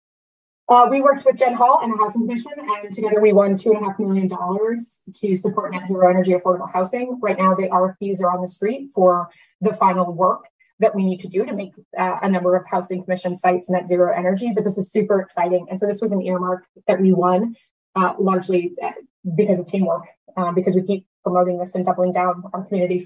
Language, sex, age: English, female, 20-39